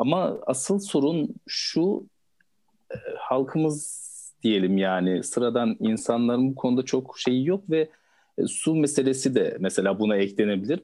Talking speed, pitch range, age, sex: 115 wpm, 105-150 Hz, 50-69, male